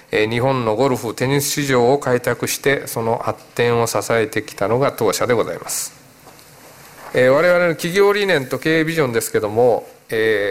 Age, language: 40-59, Japanese